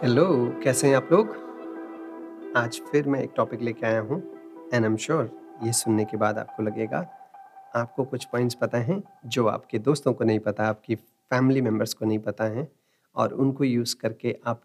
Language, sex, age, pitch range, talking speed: Hindi, male, 40-59, 115-140 Hz, 190 wpm